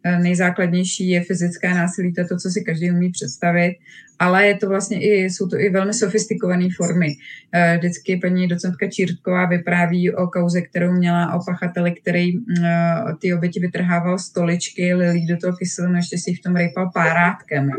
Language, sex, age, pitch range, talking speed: Czech, female, 20-39, 170-185 Hz, 160 wpm